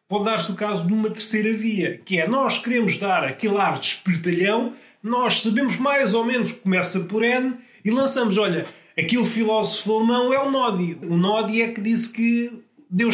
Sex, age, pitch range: male, 30-49, 180-230 Hz